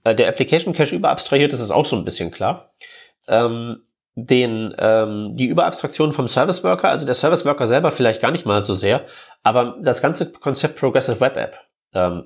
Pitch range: 115-155 Hz